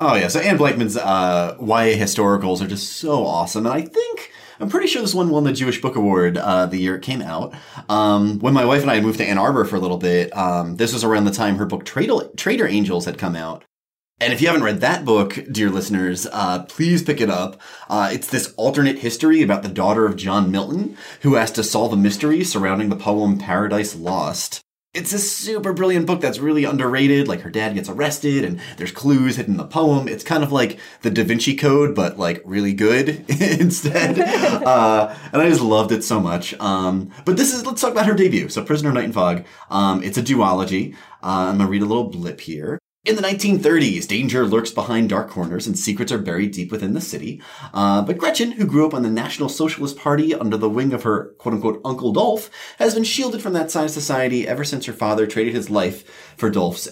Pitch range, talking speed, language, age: 100-155 Hz, 225 wpm, English, 30-49